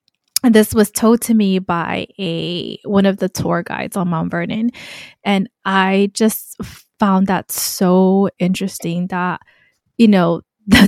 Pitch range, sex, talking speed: 180-220 Hz, female, 150 wpm